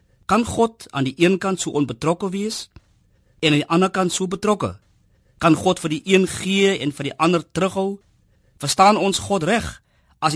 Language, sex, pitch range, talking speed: Dutch, male, 125-190 Hz, 205 wpm